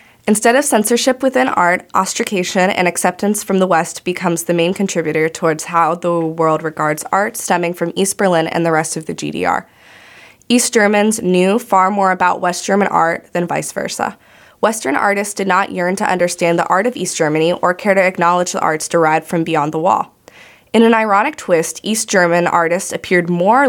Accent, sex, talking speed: American, female, 190 wpm